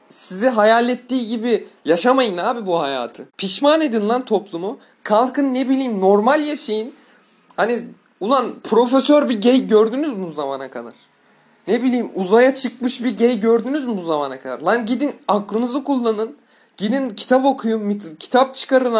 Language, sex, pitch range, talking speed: Turkish, male, 200-255 Hz, 150 wpm